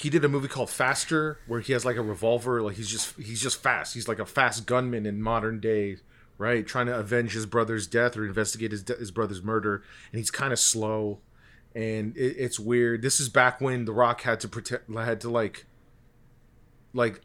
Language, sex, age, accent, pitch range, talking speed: English, male, 30-49, American, 115-135 Hz, 215 wpm